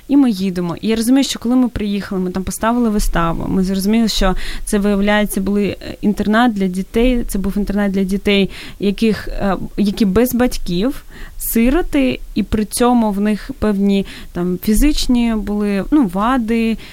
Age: 20-39